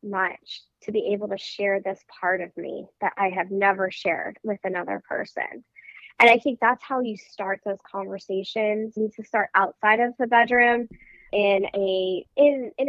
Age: 20-39